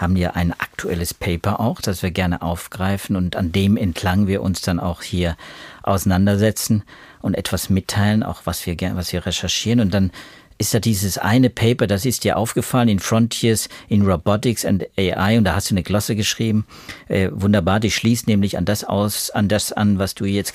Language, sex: German, male